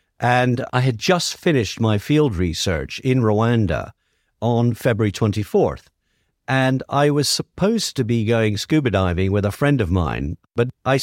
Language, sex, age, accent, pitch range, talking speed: English, male, 50-69, British, 110-145 Hz, 160 wpm